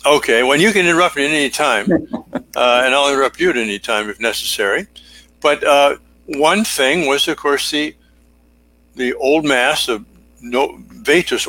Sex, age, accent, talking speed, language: male, 60-79, American, 180 wpm, English